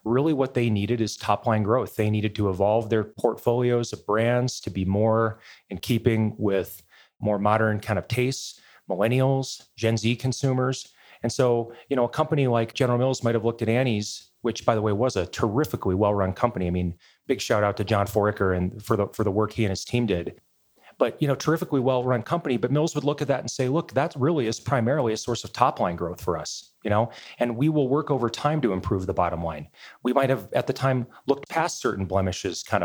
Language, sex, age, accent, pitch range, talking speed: English, male, 30-49, American, 105-135 Hz, 220 wpm